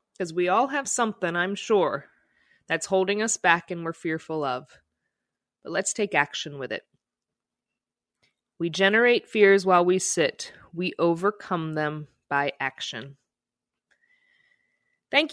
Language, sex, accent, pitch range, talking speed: English, female, American, 190-245 Hz, 130 wpm